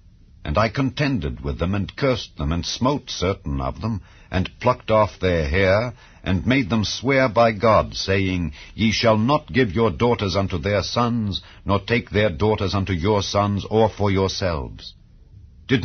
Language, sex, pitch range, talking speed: English, male, 90-115 Hz, 170 wpm